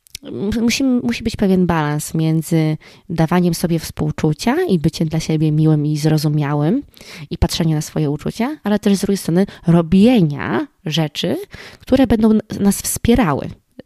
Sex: female